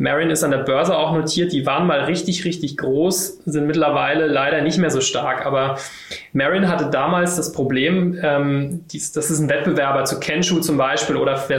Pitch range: 135-165 Hz